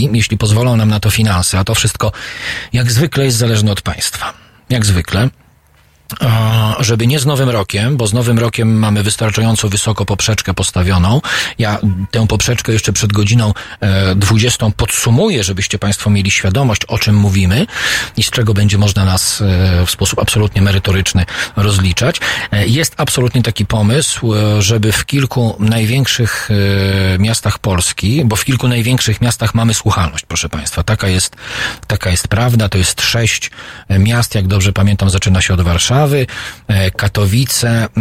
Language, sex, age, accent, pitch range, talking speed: Polish, male, 40-59, native, 95-115 Hz, 145 wpm